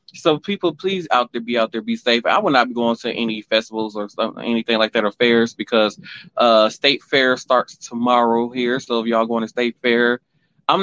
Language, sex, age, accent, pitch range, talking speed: English, male, 20-39, American, 115-145 Hz, 220 wpm